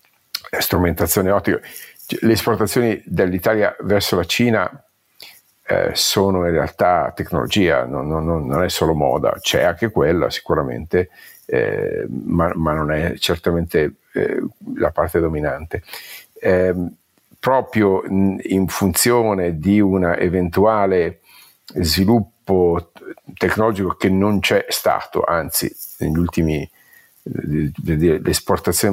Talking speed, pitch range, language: 105 wpm, 85-100 Hz, Italian